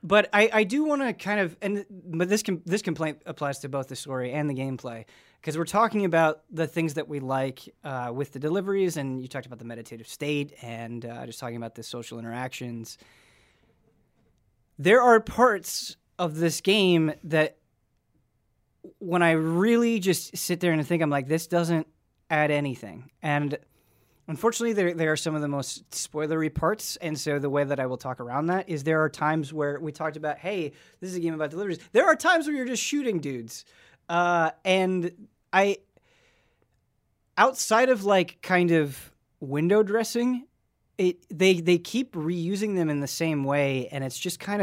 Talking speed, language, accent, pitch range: 185 wpm, English, American, 140-190 Hz